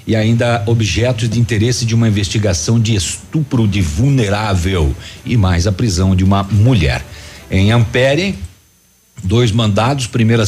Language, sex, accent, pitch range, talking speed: Portuguese, male, Brazilian, 95-120 Hz, 135 wpm